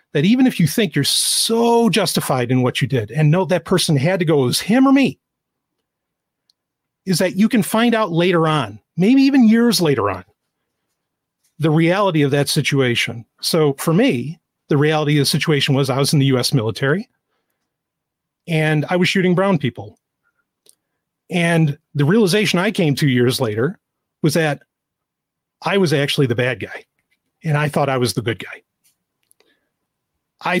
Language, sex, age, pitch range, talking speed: English, male, 40-59, 135-195 Hz, 175 wpm